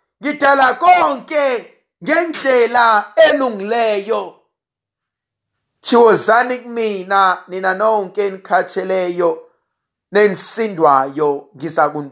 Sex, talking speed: male, 70 wpm